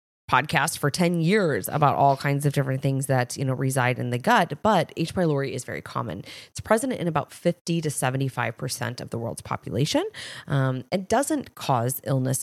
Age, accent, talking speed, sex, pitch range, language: 20-39, American, 195 wpm, female, 130-170 Hz, English